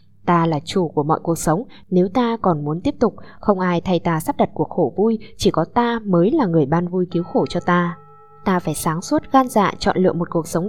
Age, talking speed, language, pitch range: 20-39, 255 wpm, Vietnamese, 165-215 Hz